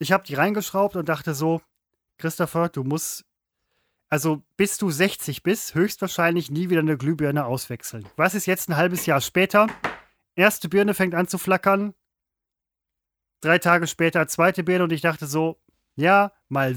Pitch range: 145-195 Hz